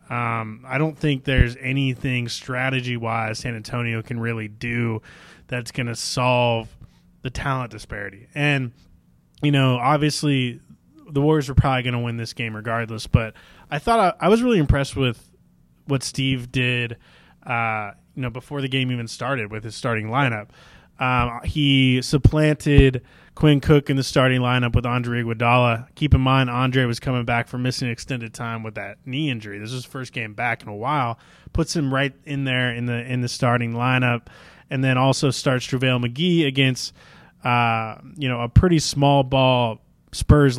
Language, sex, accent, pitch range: English, male, American, 115-135 Hz